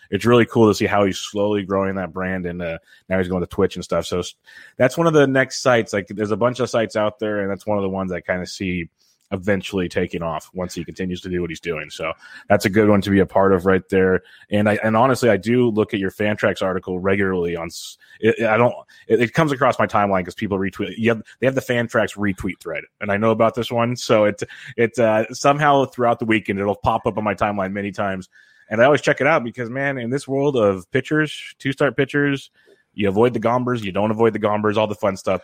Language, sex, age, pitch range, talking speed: English, male, 30-49, 95-120 Hz, 275 wpm